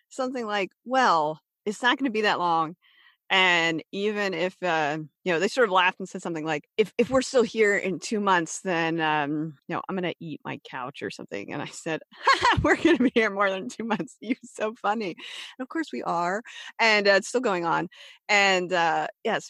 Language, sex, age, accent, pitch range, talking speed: English, female, 30-49, American, 170-235 Hz, 225 wpm